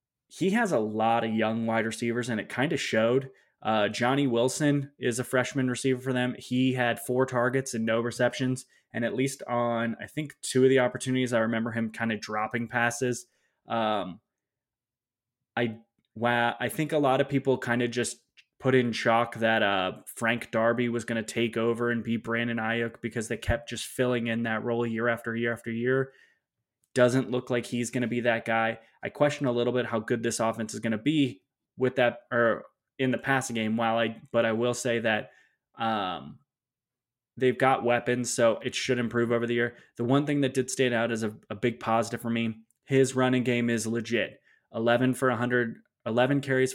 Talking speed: 205 wpm